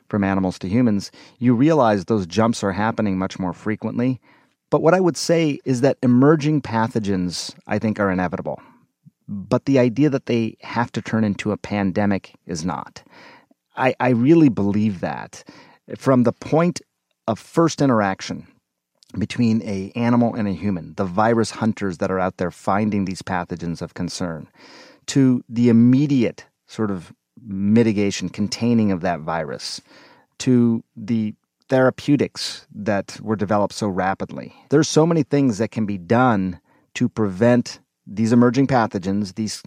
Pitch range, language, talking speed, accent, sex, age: 100-125 Hz, English, 150 wpm, American, male, 30-49